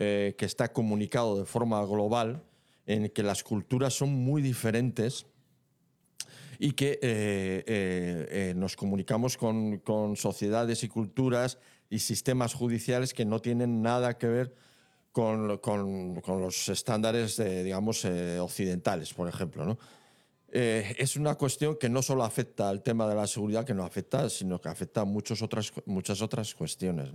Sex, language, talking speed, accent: male, Spanish, 155 wpm, Spanish